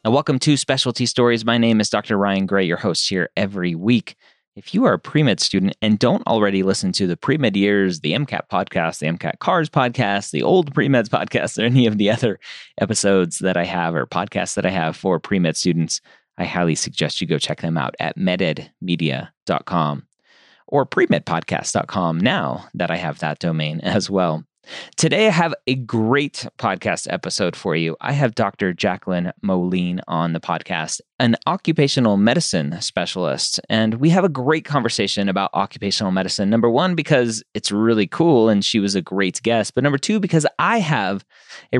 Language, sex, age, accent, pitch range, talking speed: English, male, 30-49, American, 95-125 Hz, 185 wpm